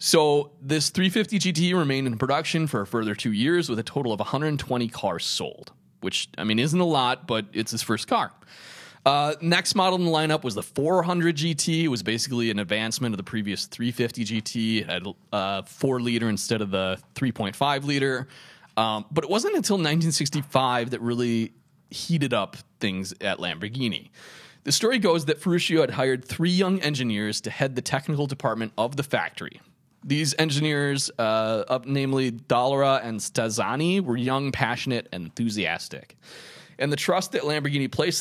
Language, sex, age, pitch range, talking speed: English, male, 30-49, 115-160 Hz, 175 wpm